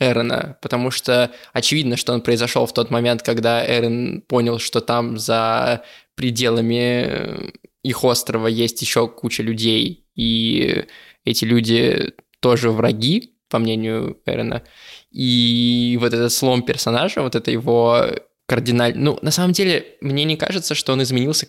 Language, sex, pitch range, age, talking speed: Russian, male, 120-135 Hz, 20-39, 140 wpm